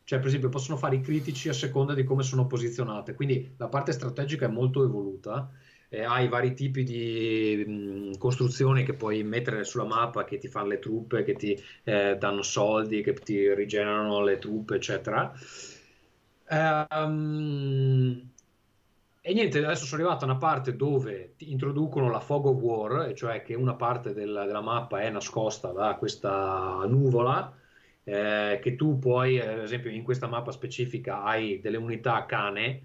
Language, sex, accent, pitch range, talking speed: Italian, male, native, 110-135 Hz, 165 wpm